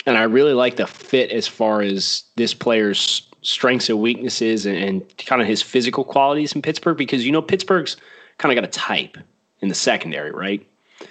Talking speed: 195 wpm